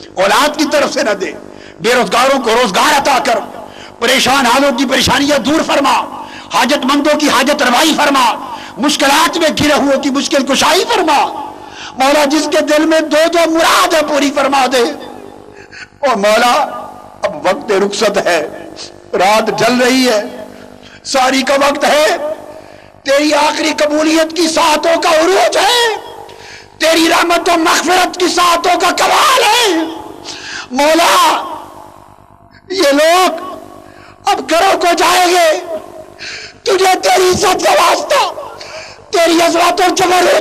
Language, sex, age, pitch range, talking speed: Urdu, male, 50-69, 295-350 Hz, 120 wpm